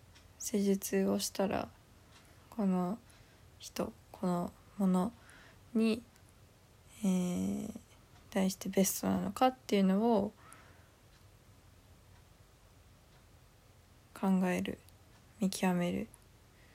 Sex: female